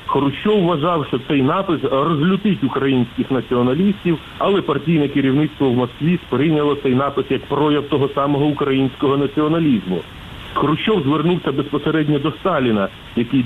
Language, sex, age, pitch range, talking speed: Ukrainian, male, 40-59, 135-165 Hz, 125 wpm